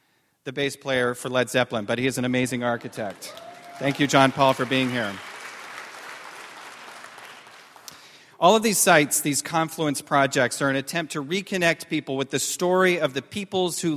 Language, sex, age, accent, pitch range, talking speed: English, male, 40-59, American, 125-165 Hz, 170 wpm